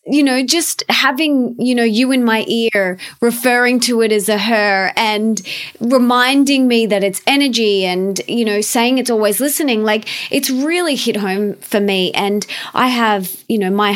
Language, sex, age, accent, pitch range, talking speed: English, female, 20-39, Australian, 210-285 Hz, 180 wpm